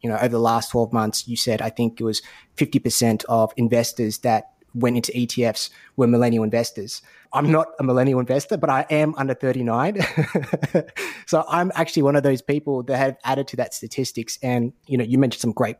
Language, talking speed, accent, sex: English, 210 wpm, Australian, male